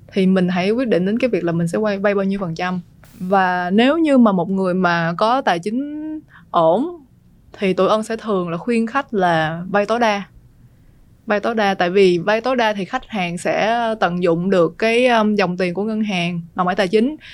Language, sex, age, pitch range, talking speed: Vietnamese, female, 20-39, 180-225 Hz, 225 wpm